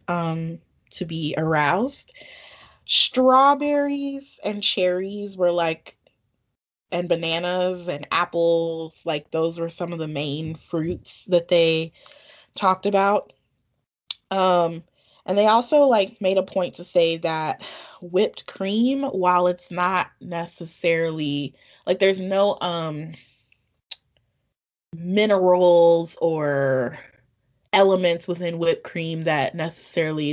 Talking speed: 105 wpm